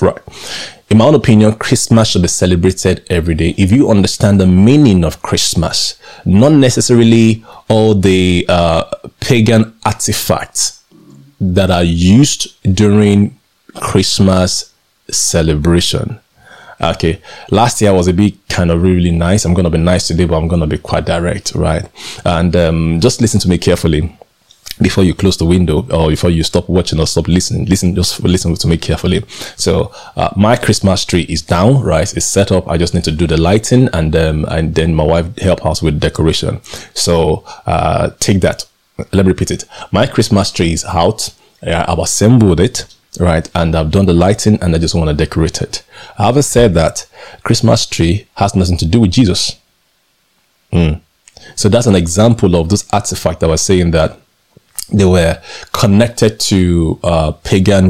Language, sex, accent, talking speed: English, male, Nigerian, 175 wpm